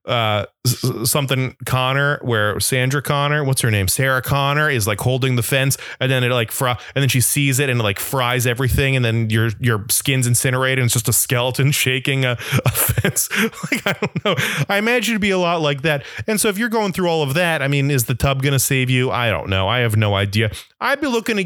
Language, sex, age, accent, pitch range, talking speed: English, male, 30-49, American, 115-145 Hz, 240 wpm